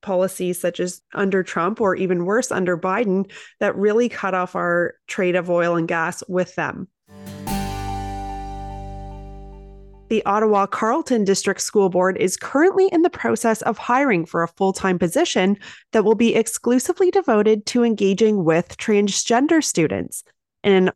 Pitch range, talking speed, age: 180-230 Hz, 145 wpm, 30-49